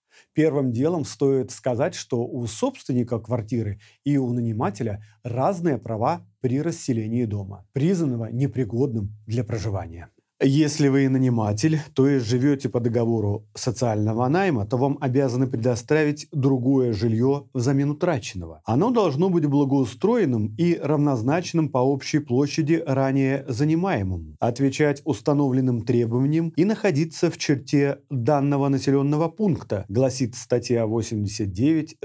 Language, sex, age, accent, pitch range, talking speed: Russian, male, 30-49, native, 120-155 Hz, 115 wpm